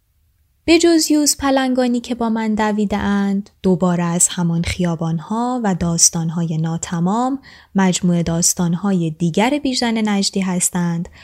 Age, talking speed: 10-29, 110 wpm